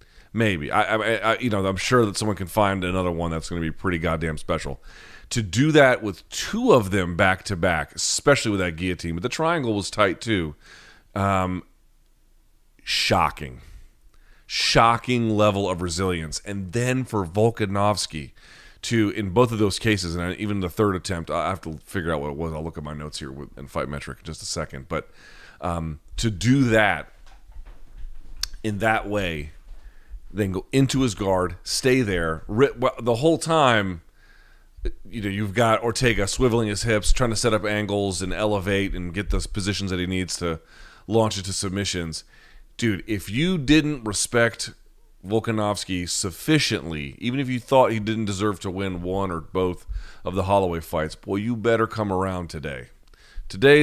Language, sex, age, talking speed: English, male, 30-49, 175 wpm